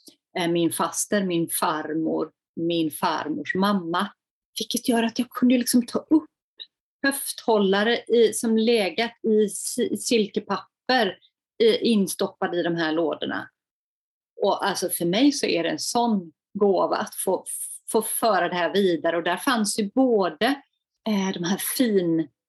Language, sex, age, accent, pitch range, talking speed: Swedish, female, 30-49, native, 185-235 Hz, 140 wpm